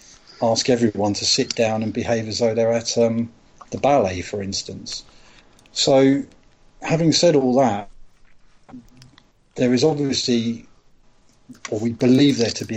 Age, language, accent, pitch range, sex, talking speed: 40-59, English, British, 110-125 Hz, male, 140 wpm